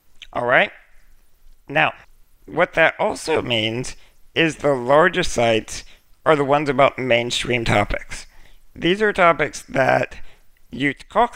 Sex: male